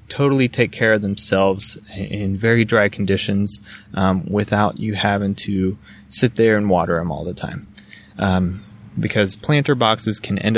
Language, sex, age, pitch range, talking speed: English, male, 20-39, 100-110 Hz, 160 wpm